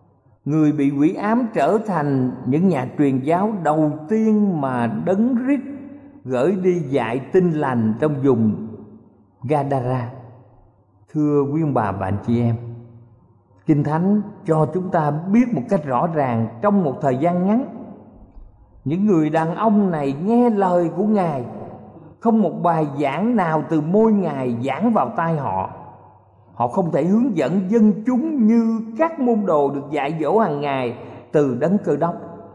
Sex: male